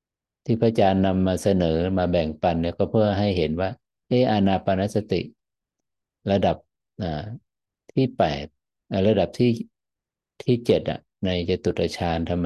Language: Thai